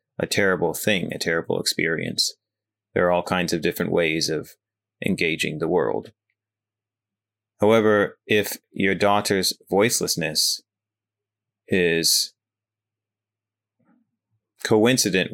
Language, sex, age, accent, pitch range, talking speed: English, male, 30-49, American, 90-110 Hz, 95 wpm